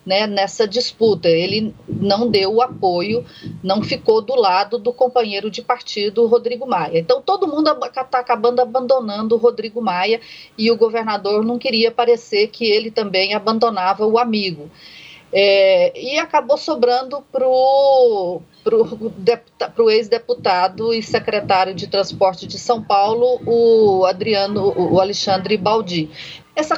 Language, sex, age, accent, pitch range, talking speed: Portuguese, female, 40-59, Brazilian, 200-270 Hz, 130 wpm